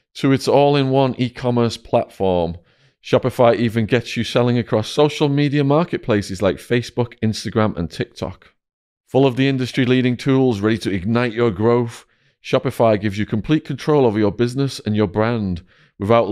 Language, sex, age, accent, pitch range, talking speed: English, male, 30-49, British, 100-135 Hz, 150 wpm